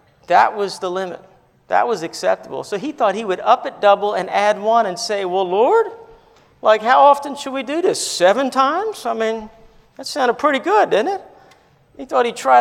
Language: English